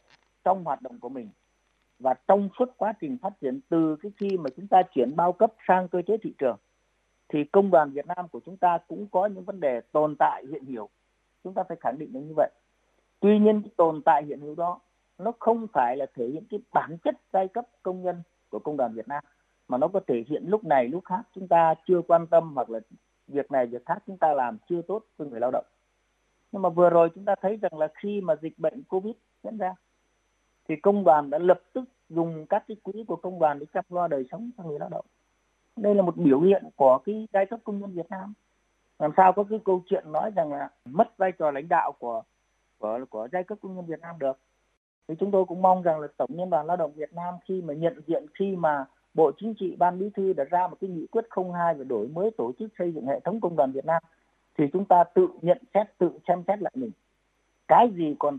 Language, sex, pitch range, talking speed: Vietnamese, male, 155-195 Hz, 250 wpm